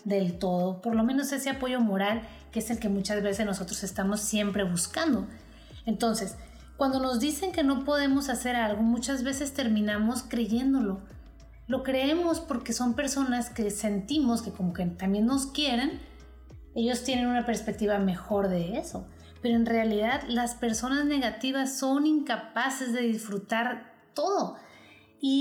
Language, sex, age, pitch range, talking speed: Spanish, female, 30-49, 210-255 Hz, 150 wpm